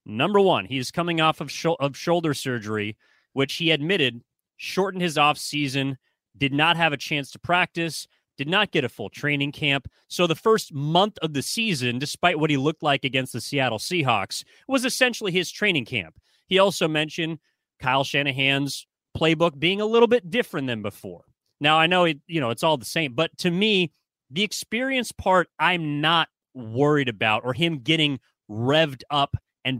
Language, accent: English, American